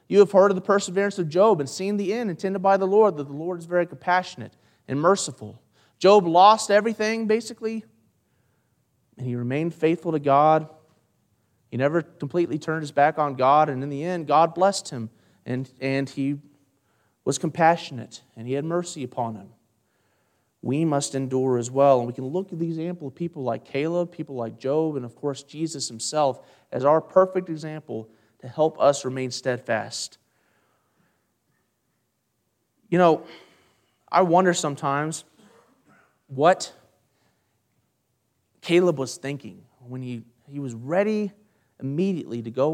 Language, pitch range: English, 125-175 Hz